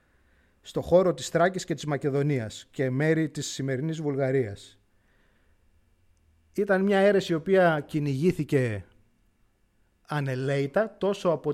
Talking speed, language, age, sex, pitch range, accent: 110 wpm, Greek, 30-49, male, 110-170 Hz, native